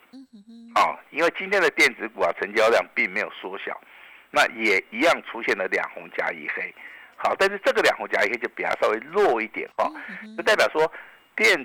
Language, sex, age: Chinese, male, 50-69